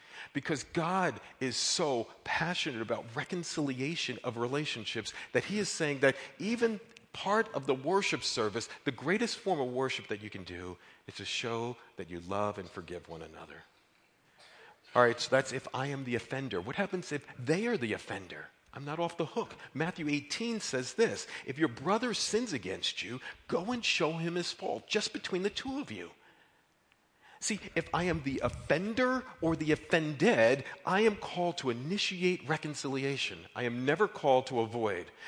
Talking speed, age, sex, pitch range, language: 175 wpm, 40-59, male, 120-185 Hz, English